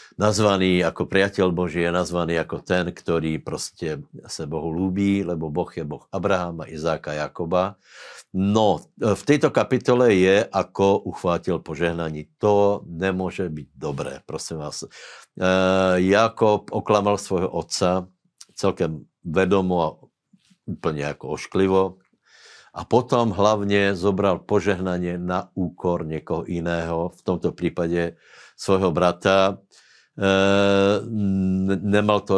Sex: male